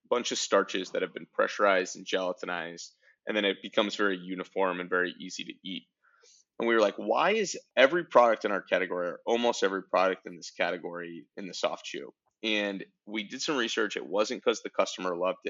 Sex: male